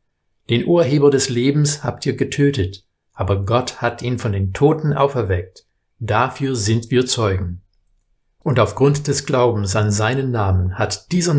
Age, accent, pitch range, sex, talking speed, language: 50-69, German, 100-140 Hz, male, 150 wpm, German